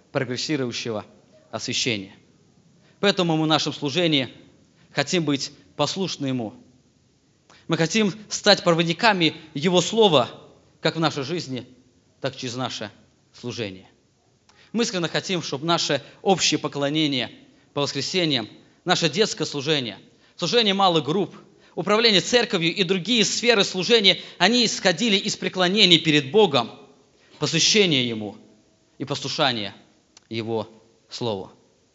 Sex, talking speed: male, 110 wpm